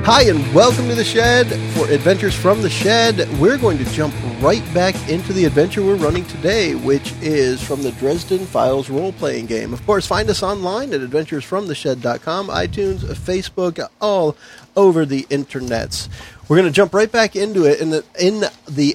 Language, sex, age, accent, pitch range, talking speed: English, male, 40-59, American, 120-180 Hz, 175 wpm